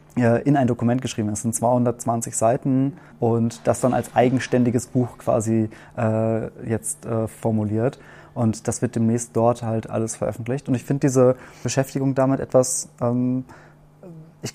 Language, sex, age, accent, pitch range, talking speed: German, male, 20-39, German, 115-135 Hz, 150 wpm